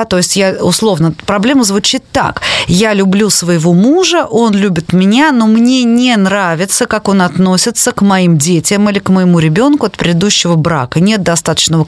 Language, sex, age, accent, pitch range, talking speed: Russian, female, 20-39, native, 170-220 Hz, 165 wpm